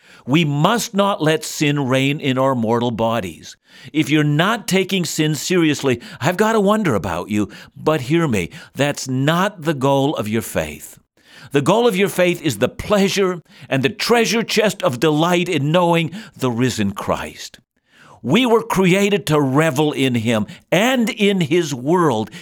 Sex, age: male, 60-79